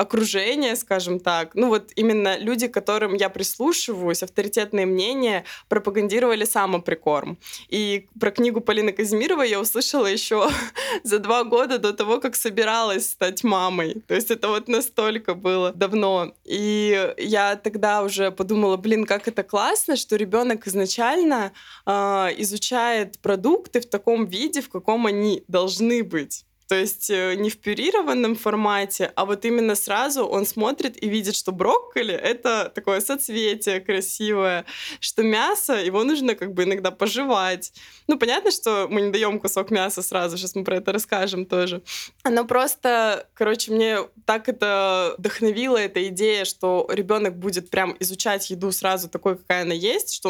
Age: 20-39